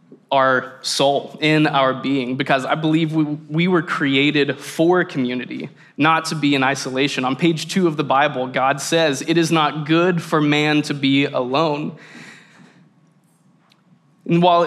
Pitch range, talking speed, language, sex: 135-160 Hz, 155 wpm, English, male